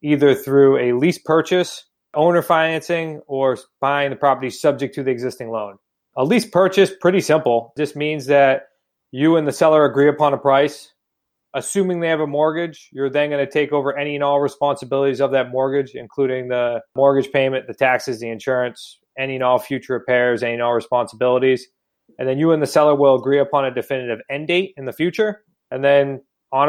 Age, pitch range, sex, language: 20-39, 130-150 Hz, male, English